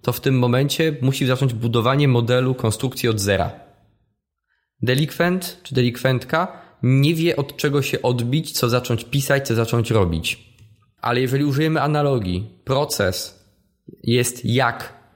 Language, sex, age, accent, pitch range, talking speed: Polish, male, 20-39, native, 115-140 Hz, 130 wpm